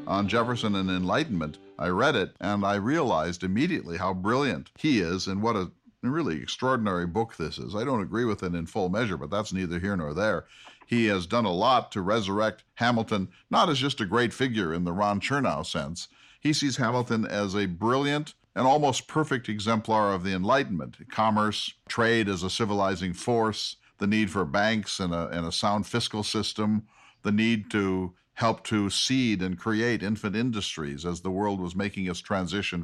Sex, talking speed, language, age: male, 185 wpm, English, 50-69